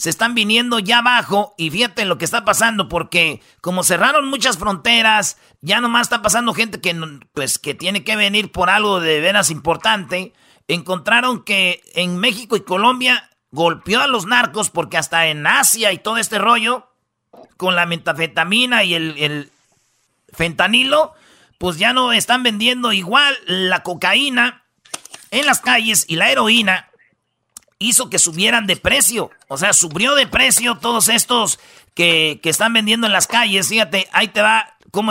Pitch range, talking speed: 170-230 Hz, 160 wpm